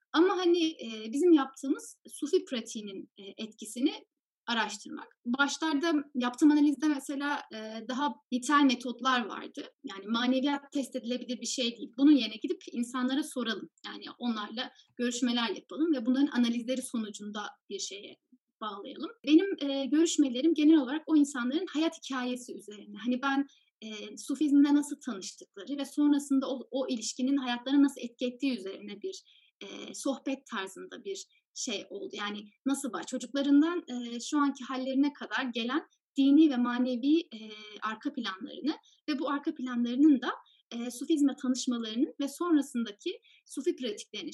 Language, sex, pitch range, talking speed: Turkish, female, 245-305 Hz, 125 wpm